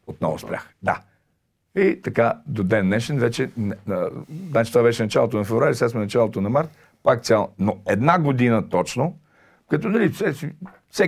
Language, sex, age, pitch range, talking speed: Bulgarian, male, 50-69, 100-140 Hz, 175 wpm